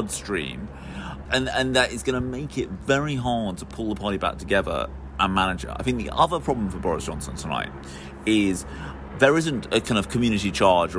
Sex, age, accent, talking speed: male, 30-49, British, 200 wpm